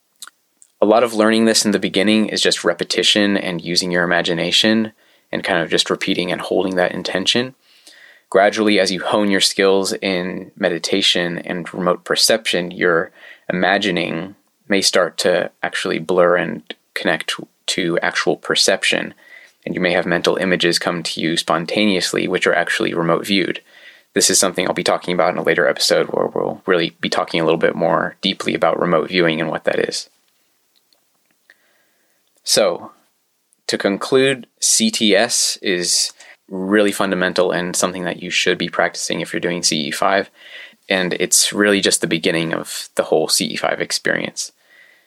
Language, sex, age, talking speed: English, male, 20-39, 160 wpm